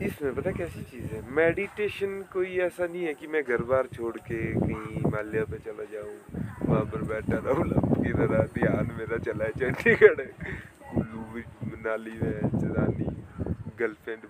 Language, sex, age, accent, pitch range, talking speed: Hindi, male, 20-39, native, 110-155 Hz, 140 wpm